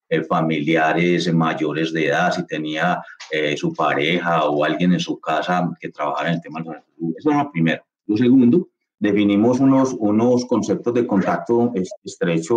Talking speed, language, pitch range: 160 wpm, Spanish, 90-120 Hz